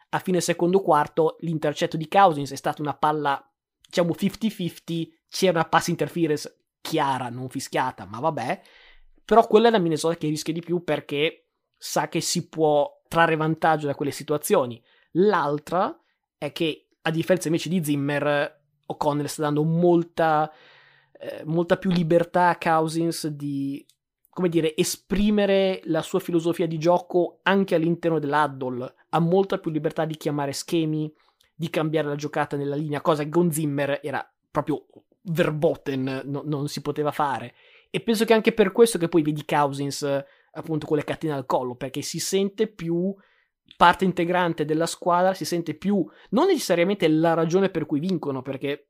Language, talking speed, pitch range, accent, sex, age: Italian, 160 wpm, 145-180 Hz, native, male, 20-39